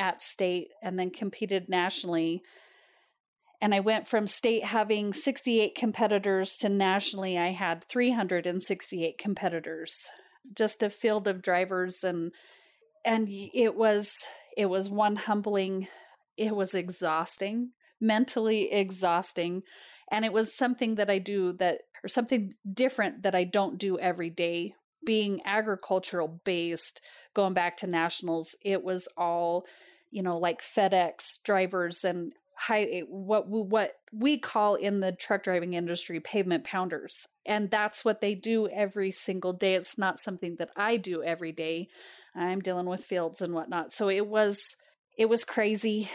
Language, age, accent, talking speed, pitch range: English, 30-49, American, 145 wpm, 180-215 Hz